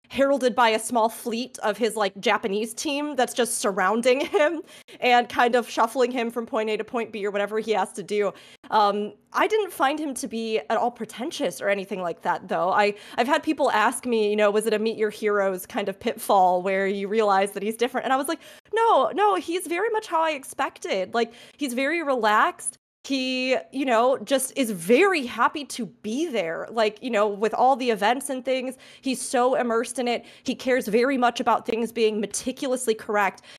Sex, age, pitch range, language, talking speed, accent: female, 20-39, 210-255 Hz, English, 210 wpm, American